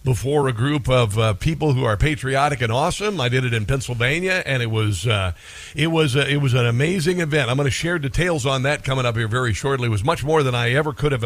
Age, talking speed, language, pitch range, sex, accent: 50-69, 265 wpm, English, 125-155 Hz, male, American